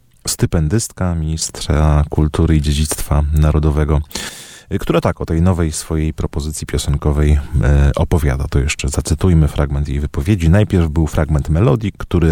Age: 40-59